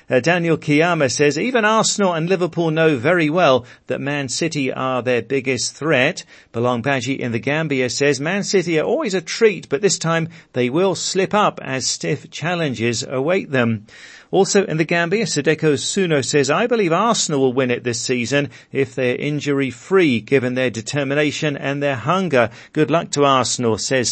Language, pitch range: English, 130-165 Hz